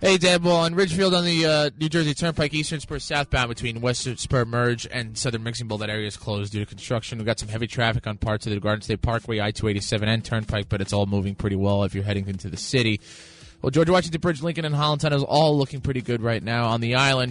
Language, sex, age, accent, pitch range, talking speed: English, male, 20-39, American, 105-130 Hz, 255 wpm